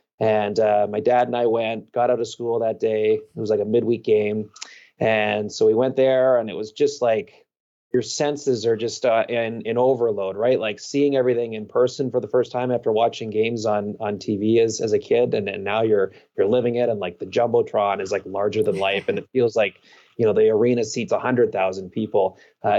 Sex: male